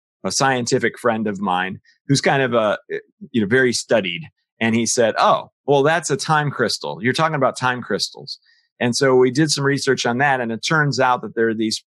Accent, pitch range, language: American, 110-145 Hz, English